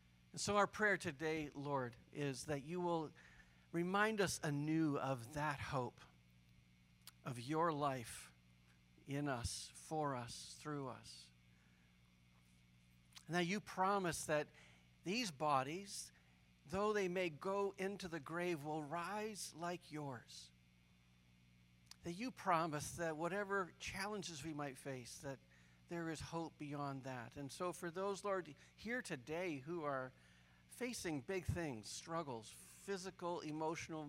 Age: 50-69